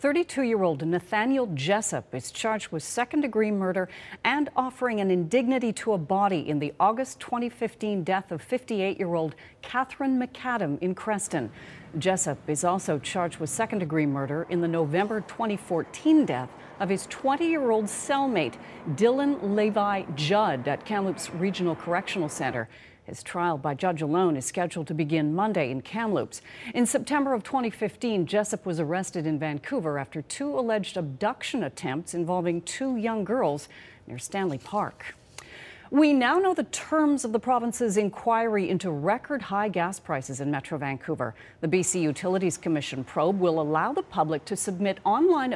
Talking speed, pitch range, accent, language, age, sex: 150 wpm, 165-235 Hz, American, English, 40-59, female